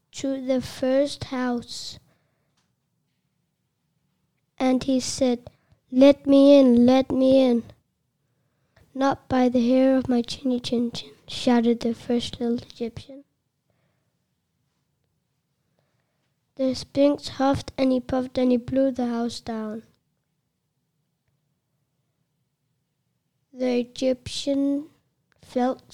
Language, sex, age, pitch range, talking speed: English, female, 20-39, 225-265 Hz, 95 wpm